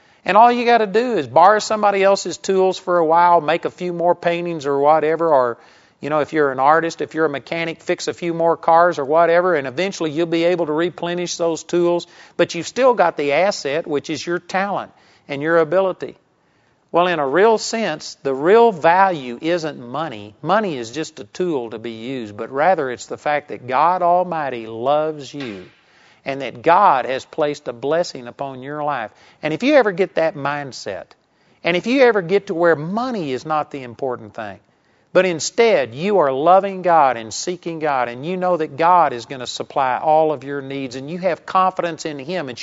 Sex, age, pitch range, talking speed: male, 50-69, 145-180 Hz, 210 wpm